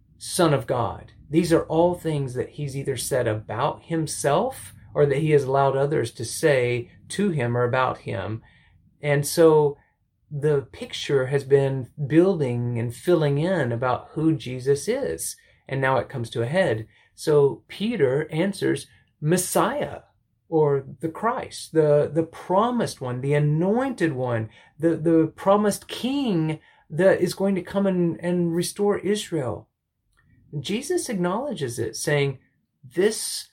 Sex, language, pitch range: male, English, 120-170 Hz